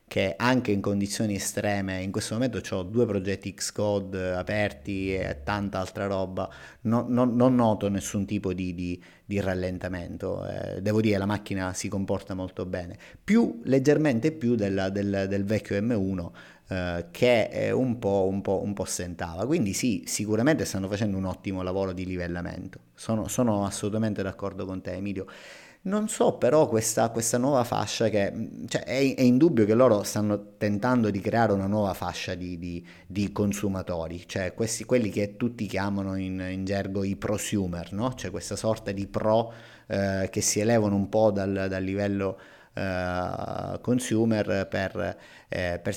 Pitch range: 95-110 Hz